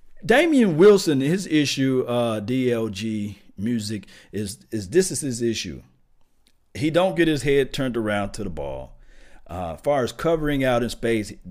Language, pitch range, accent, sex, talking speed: English, 95-125 Hz, American, male, 160 wpm